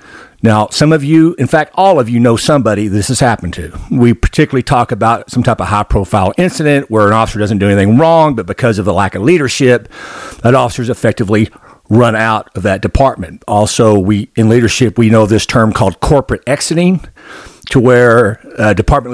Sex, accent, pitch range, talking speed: male, American, 110-140 Hz, 190 wpm